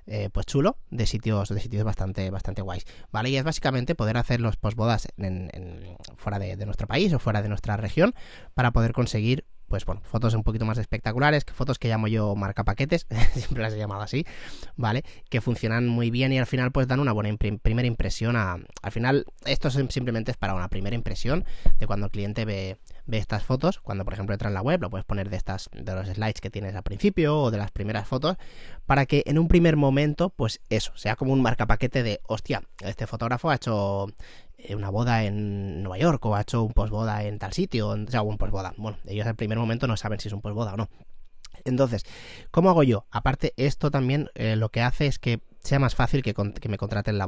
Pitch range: 100-130 Hz